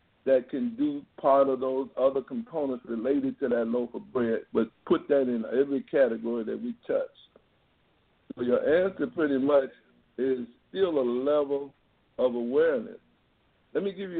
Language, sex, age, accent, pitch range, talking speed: English, male, 60-79, American, 120-155 Hz, 155 wpm